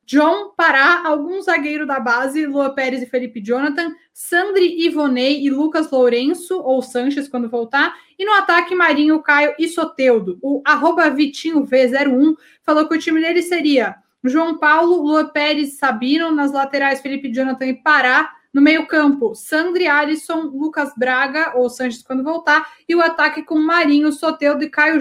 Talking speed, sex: 165 wpm, female